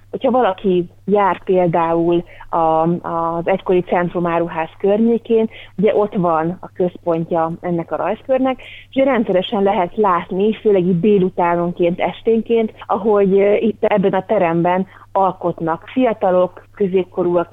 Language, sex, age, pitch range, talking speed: Hungarian, female, 30-49, 175-205 Hz, 115 wpm